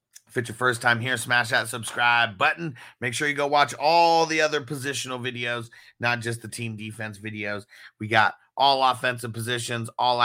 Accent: American